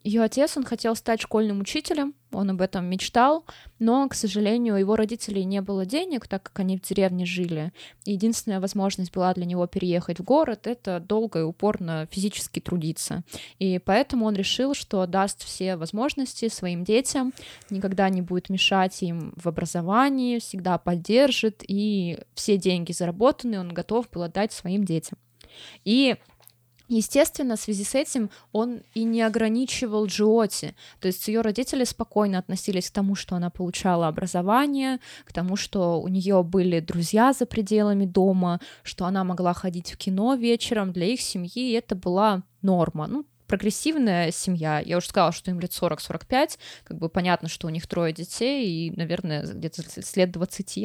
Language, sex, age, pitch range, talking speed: Russian, female, 20-39, 180-225 Hz, 165 wpm